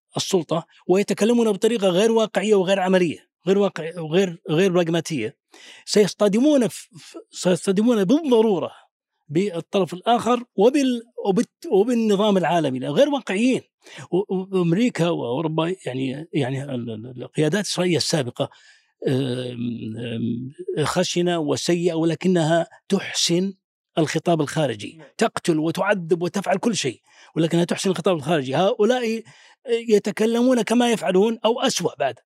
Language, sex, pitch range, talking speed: Arabic, male, 165-220 Hz, 100 wpm